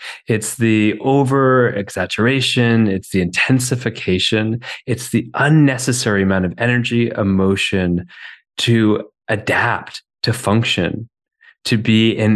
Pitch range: 95-120 Hz